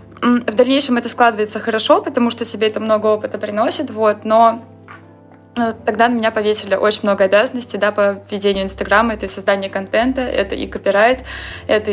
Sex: female